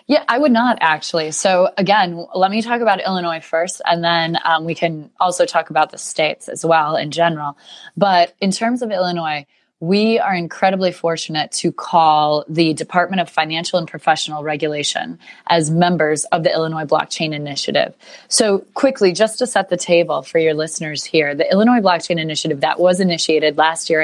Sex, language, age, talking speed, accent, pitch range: female, English, 20-39, 180 wpm, American, 155-190 Hz